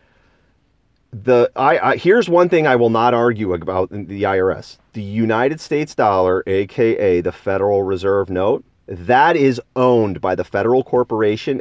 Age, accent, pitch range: 40-59, American, 100-130 Hz